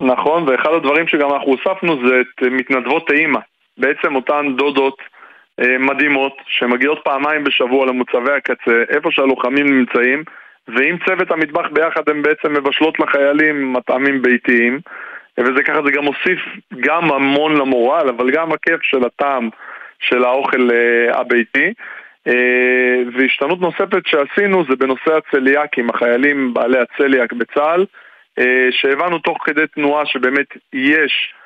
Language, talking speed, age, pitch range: Hebrew, 120 wpm, 20-39, 125-155 Hz